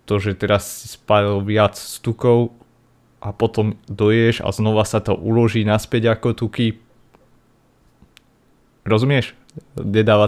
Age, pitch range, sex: 30-49, 100-120 Hz, male